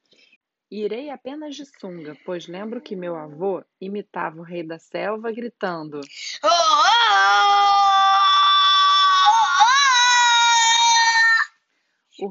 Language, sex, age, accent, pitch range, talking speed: Portuguese, female, 30-49, Brazilian, 180-270 Hz, 80 wpm